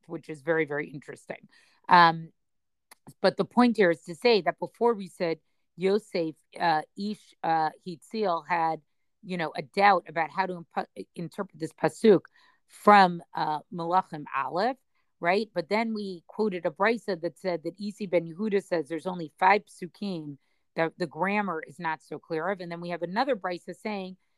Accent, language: American, English